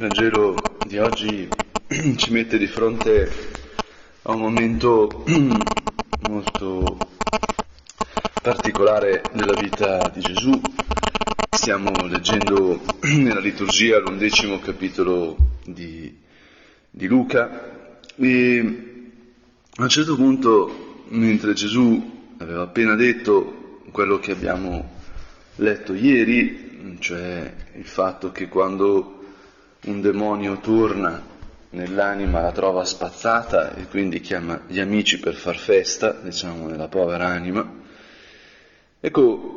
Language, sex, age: Italian, male, 30-49